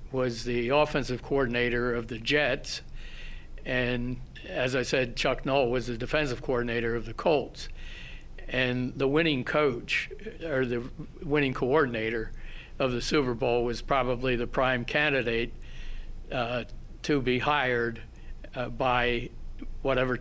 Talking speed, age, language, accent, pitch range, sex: 130 wpm, 60-79, English, American, 120-140 Hz, male